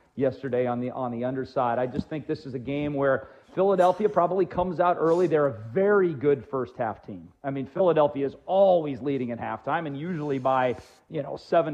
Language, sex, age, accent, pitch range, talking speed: English, male, 40-59, American, 130-155 Hz, 200 wpm